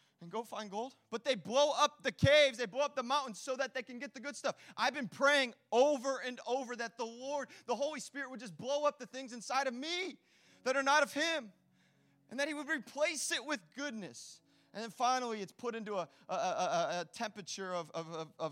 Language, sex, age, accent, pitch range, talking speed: English, male, 30-49, American, 150-235 Hz, 225 wpm